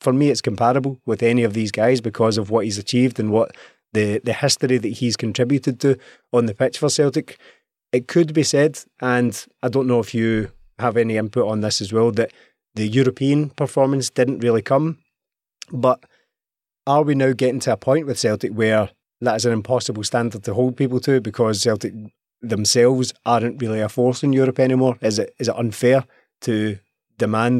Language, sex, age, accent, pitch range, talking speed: English, male, 20-39, British, 110-130 Hz, 195 wpm